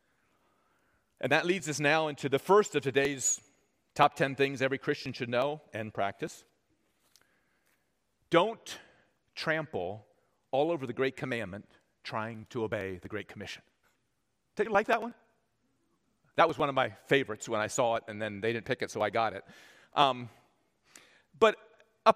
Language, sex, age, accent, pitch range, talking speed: English, male, 40-59, American, 135-185 Hz, 160 wpm